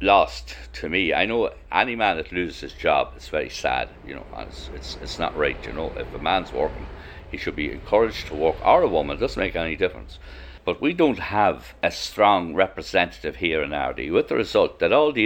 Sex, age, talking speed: male, 60-79, 230 wpm